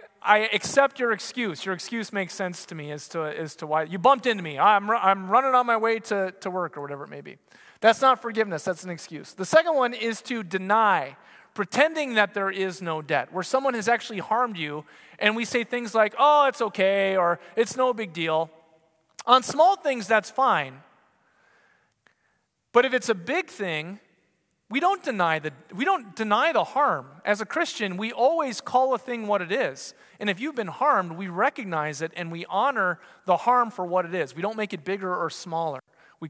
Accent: American